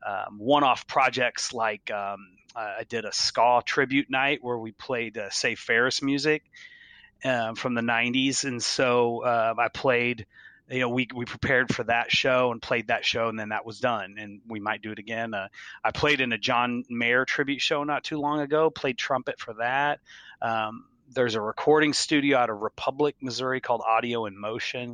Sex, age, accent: male, 30-49, American